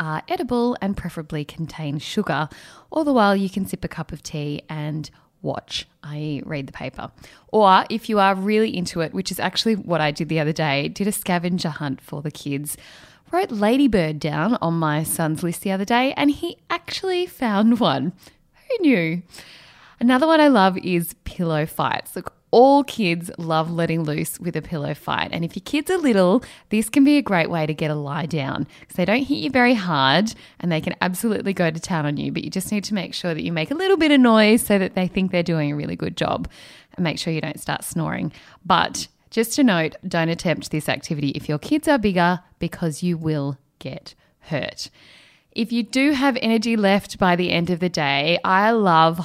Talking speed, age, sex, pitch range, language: 215 wpm, 10-29, female, 155-220 Hz, English